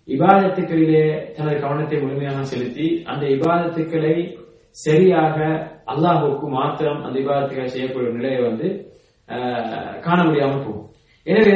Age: 30-49